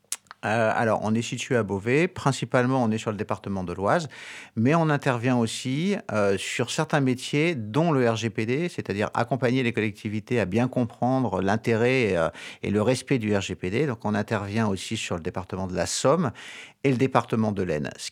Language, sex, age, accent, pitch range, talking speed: French, male, 50-69, French, 110-135 Hz, 185 wpm